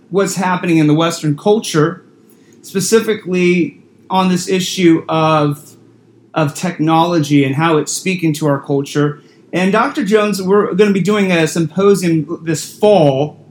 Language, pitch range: English, 145-180 Hz